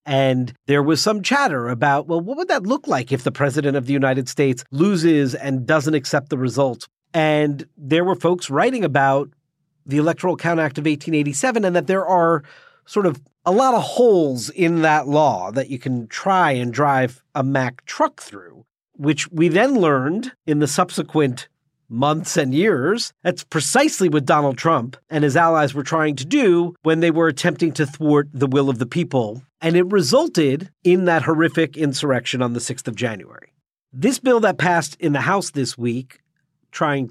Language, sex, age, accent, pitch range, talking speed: English, male, 40-59, American, 135-170 Hz, 185 wpm